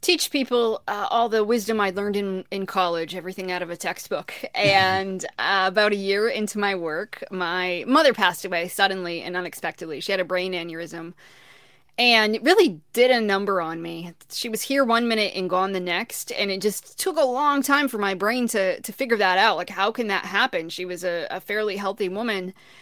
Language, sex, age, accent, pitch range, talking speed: English, female, 20-39, American, 185-230 Hz, 210 wpm